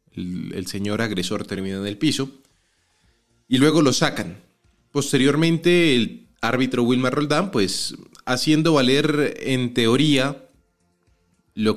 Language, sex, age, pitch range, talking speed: Spanish, male, 30-49, 105-140 Hz, 105 wpm